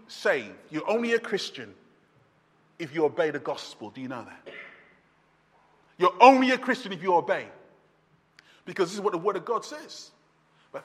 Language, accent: English, British